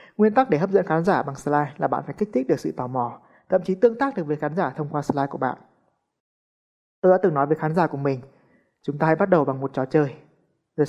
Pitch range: 140-185 Hz